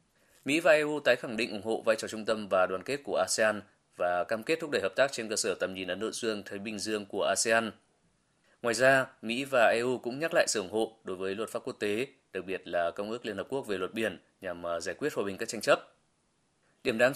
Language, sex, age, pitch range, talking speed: Vietnamese, male, 20-39, 100-130 Hz, 260 wpm